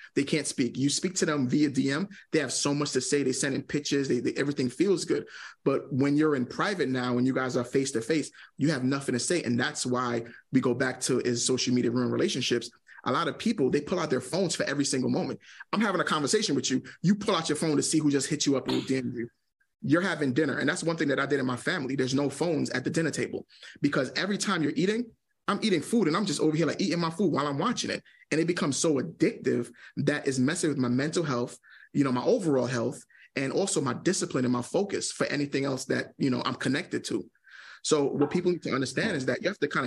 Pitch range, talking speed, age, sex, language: 130-150 Hz, 255 wpm, 30-49, male, English